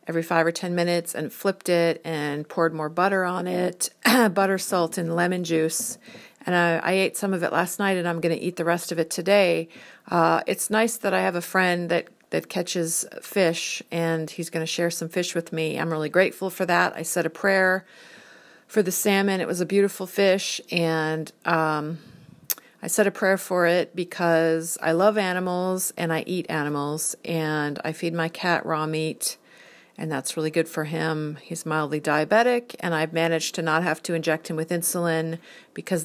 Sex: female